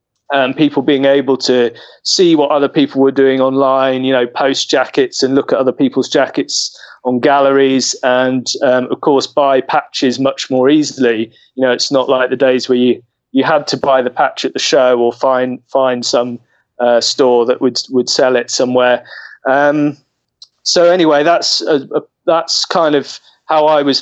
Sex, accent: male, British